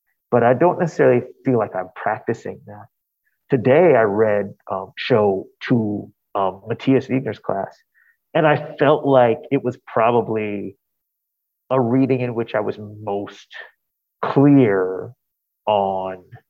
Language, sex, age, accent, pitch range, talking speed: English, male, 30-49, American, 110-155 Hz, 125 wpm